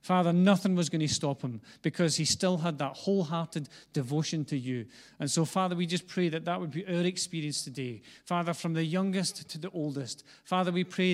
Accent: British